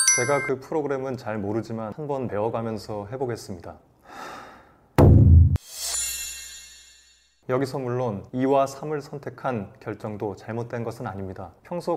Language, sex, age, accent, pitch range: Korean, male, 20-39, native, 105-135 Hz